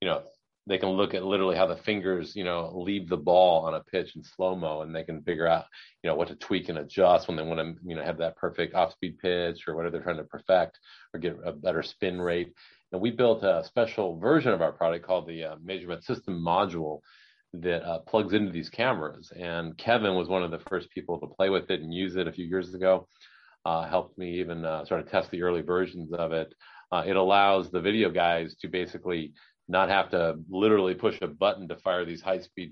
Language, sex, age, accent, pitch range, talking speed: English, male, 40-59, American, 80-95 Hz, 235 wpm